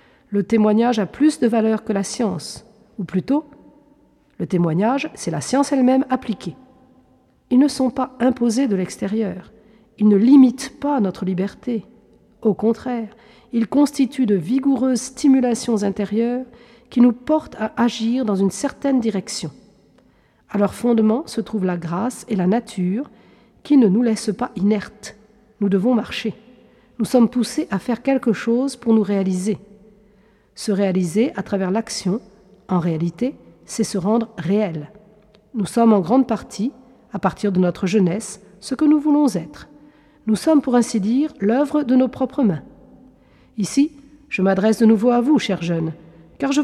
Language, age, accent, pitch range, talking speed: French, 50-69, French, 200-255 Hz, 160 wpm